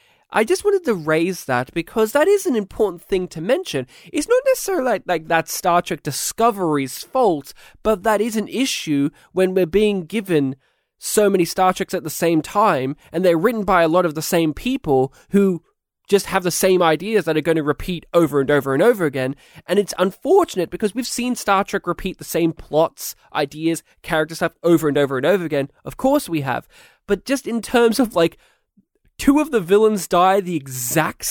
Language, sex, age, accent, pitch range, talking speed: English, male, 20-39, Australian, 155-220 Hz, 205 wpm